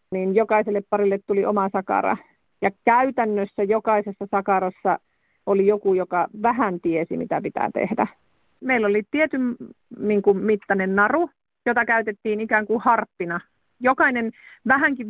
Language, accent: Finnish, native